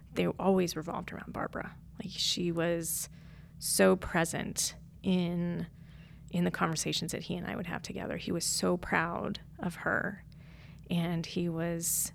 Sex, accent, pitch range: female, American, 155-185 Hz